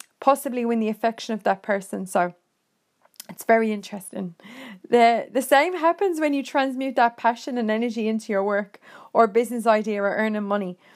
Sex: female